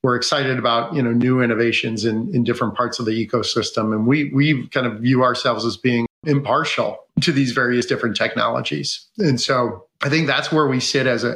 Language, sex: English, male